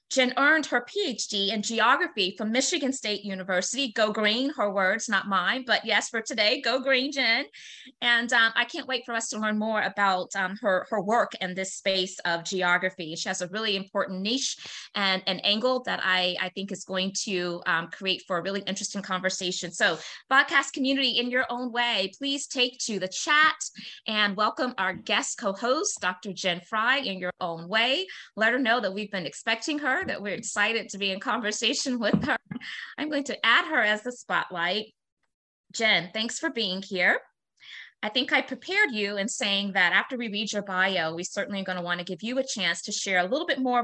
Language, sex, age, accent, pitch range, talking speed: English, female, 20-39, American, 190-255 Hz, 205 wpm